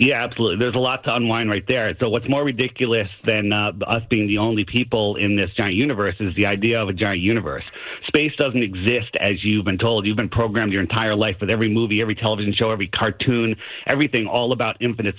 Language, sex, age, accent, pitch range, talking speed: English, male, 40-59, American, 105-125 Hz, 220 wpm